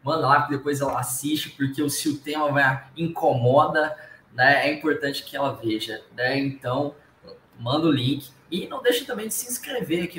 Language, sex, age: Portuguese, male, 10-29